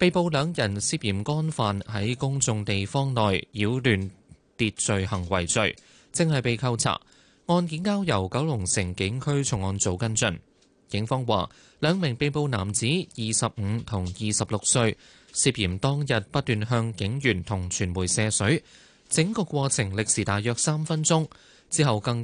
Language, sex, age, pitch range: Chinese, male, 20-39, 105-140 Hz